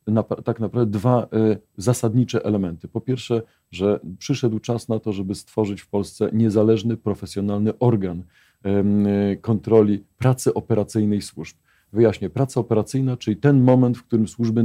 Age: 40-59